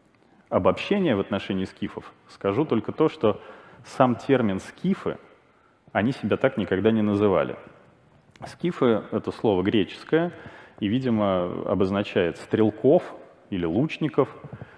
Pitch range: 95-125 Hz